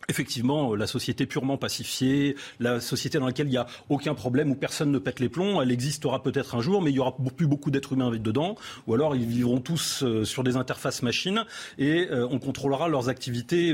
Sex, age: male, 40-59